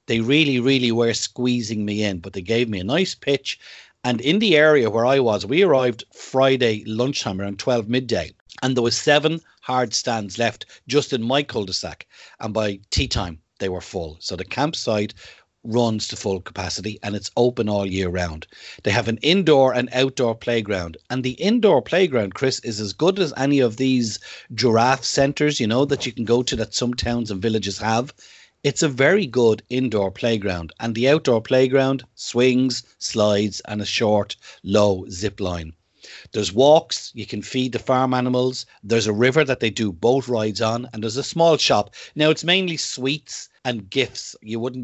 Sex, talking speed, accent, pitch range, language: male, 190 wpm, Irish, 105-135 Hz, English